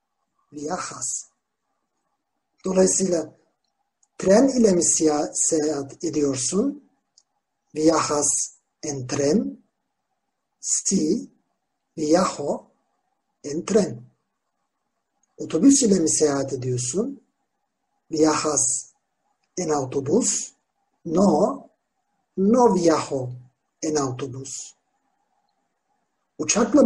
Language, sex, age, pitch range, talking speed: Turkish, male, 60-79, 145-230 Hz, 65 wpm